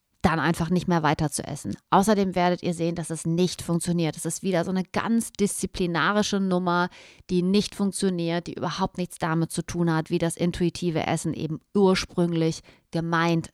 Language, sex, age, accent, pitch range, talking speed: German, female, 30-49, German, 175-225 Hz, 175 wpm